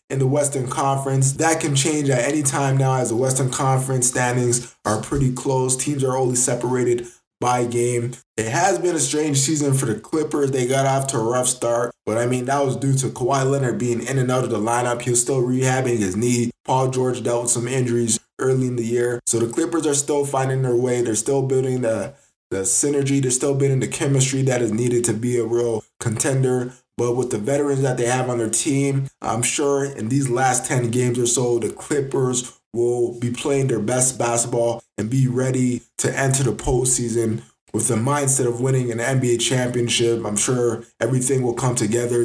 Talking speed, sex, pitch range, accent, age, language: 210 wpm, male, 120-135 Hz, American, 20-39, English